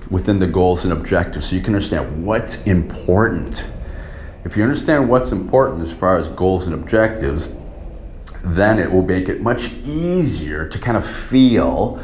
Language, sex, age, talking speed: English, male, 40-59, 165 wpm